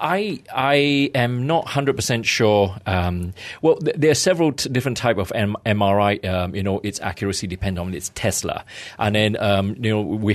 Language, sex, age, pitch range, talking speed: English, male, 40-59, 95-125 Hz, 195 wpm